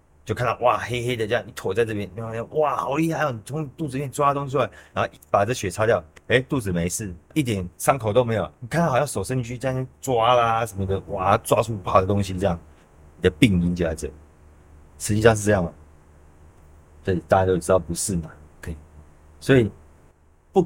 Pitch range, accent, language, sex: 75-110 Hz, native, Chinese, male